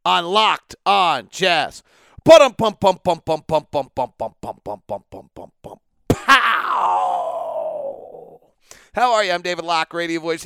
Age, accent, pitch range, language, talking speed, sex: 40-59, American, 140-190 Hz, English, 65 wpm, male